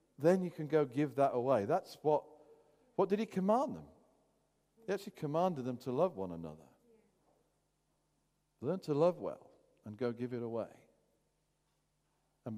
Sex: male